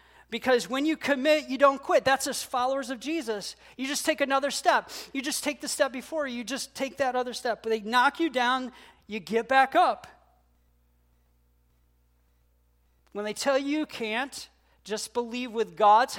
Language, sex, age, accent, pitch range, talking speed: English, male, 40-59, American, 190-255 Hz, 180 wpm